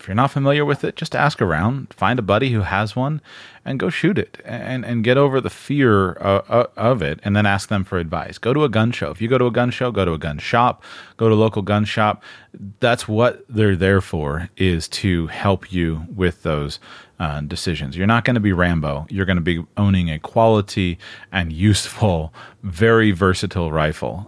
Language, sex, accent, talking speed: English, male, American, 215 wpm